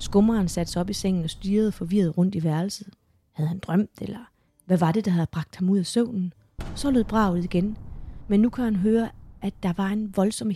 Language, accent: Danish, native